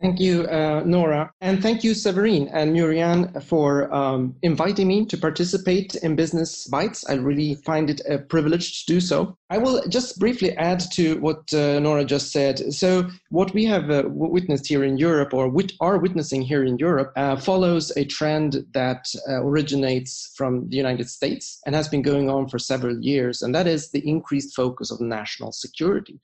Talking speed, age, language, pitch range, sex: 190 wpm, 30-49, English, 135-170 Hz, male